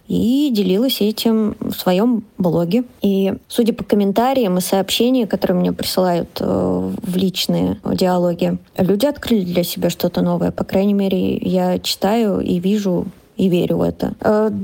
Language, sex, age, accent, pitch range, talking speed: Russian, female, 20-39, native, 190-230 Hz, 150 wpm